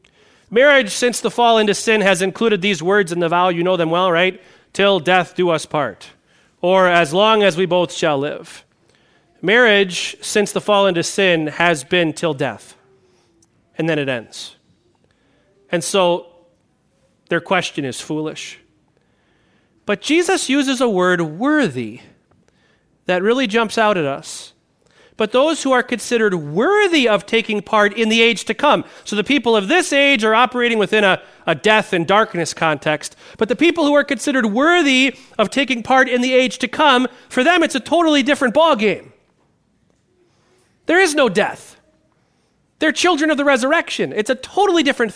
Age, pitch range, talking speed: 40-59, 175-255 Hz, 170 wpm